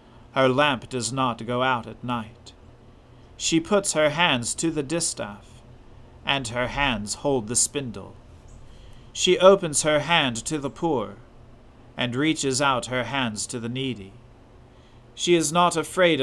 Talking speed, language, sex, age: 150 wpm, English, male, 40-59